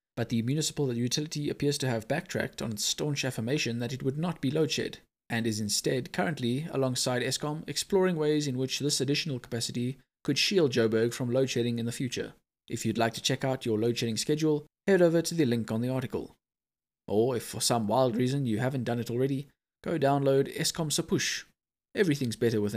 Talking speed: 190 wpm